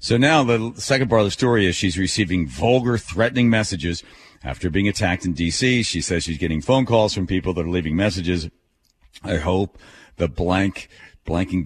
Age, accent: 40-59, American